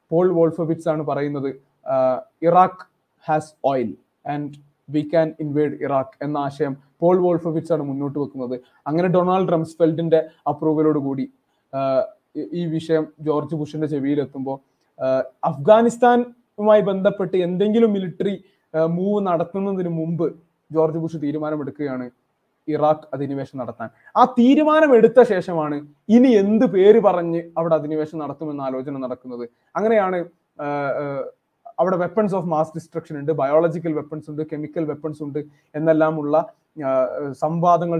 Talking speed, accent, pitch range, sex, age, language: 130 wpm, native, 145-180 Hz, male, 20-39, Malayalam